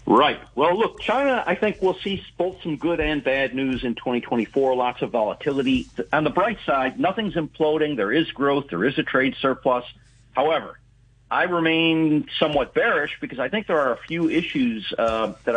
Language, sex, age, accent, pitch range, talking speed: English, male, 50-69, American, 115-160 Hz, 185 wpm